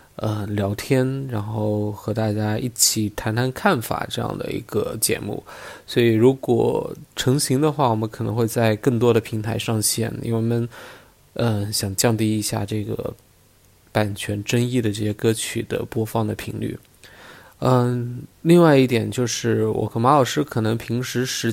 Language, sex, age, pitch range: Chinese, male, 20-39, 110-125 Hz